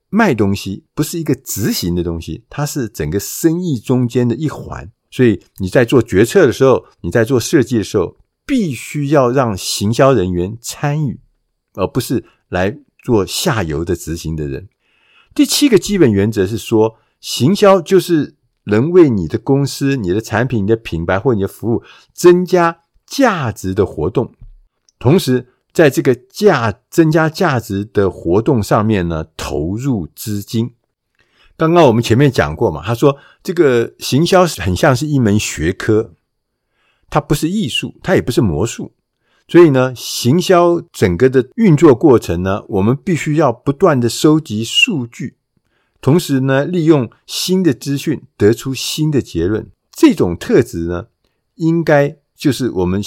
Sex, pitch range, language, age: male, 105-155 Hz, Chinese, 50-69